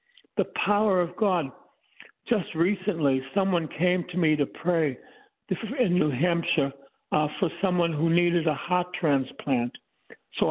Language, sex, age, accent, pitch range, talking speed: English, male, 60-79, American, 150-195 Hz, 135 wpm